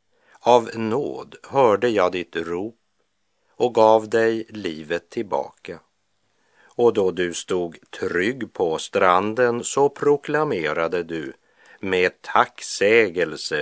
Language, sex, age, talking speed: French, male, 50-69, 100 wpm